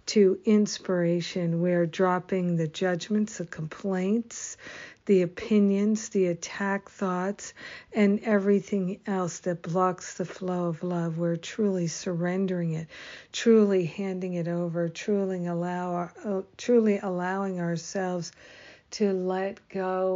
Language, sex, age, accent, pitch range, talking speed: English, female, 60-79, American, 175-195 Hz, 115 wpm